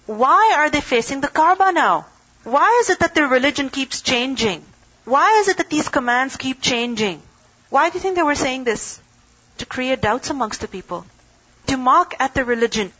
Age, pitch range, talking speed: 40-59, 210-265 Hz, 195 wpm